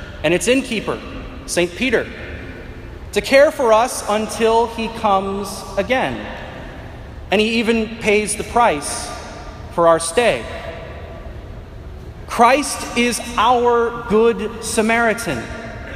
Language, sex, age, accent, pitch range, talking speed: English, male, 30-49, American, 205-255 Hz, 100 wpm